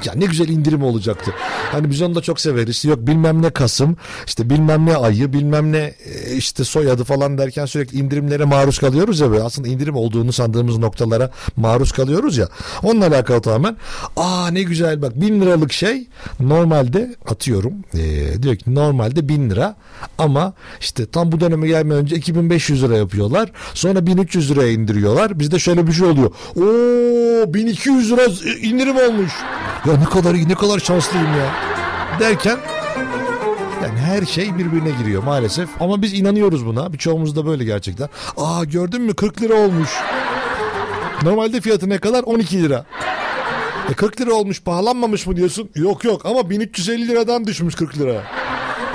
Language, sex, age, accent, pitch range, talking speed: Turkish, male, 60-79, native, 135-195 Hz, 160 wpm